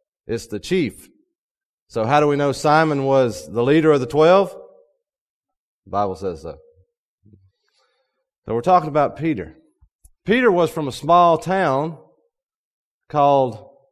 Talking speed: 135 wpm